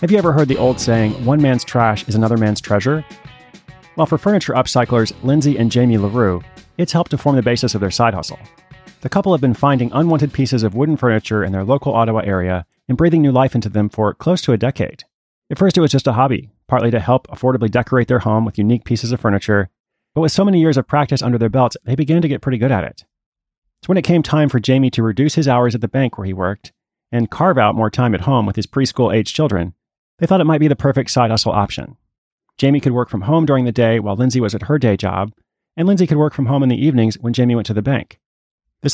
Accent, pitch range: American, 110-145 Hz